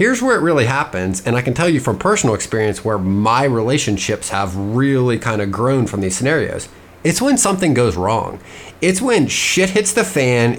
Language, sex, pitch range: English, male, 110-155 Hz